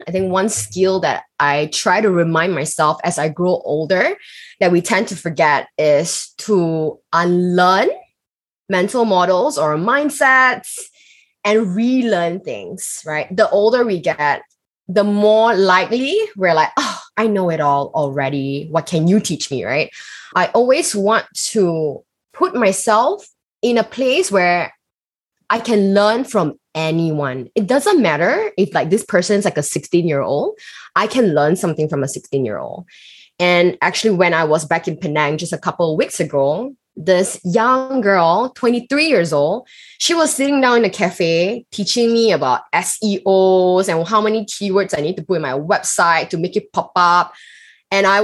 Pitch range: 165-220 Hz